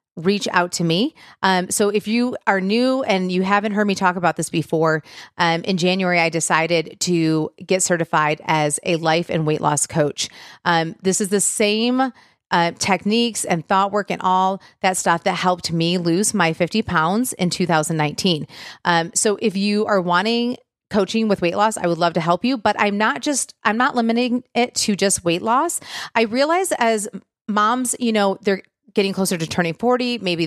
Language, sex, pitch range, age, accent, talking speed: English, female, 170-215 Hz, 30-49, American, 195 wpm